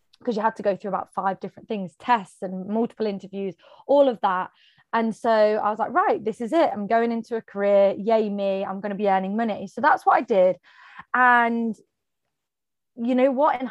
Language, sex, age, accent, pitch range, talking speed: English, female, 20-39, British, 195-240 Hz, 215 wpm